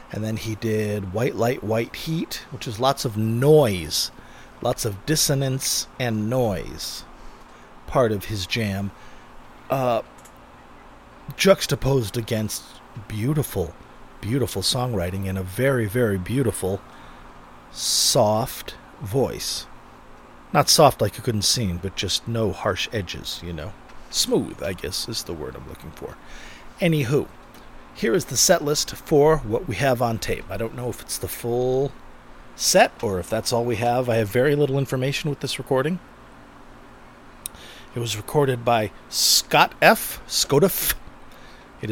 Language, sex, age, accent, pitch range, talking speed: English, male, 40-59, American, 105-135 Hz, 140 wpm